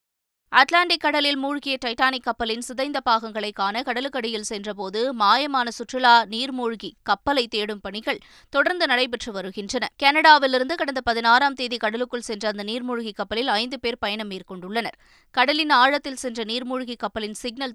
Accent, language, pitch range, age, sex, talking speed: native, Tamil, 220-270 Hz, 20-39, female, 125 wpm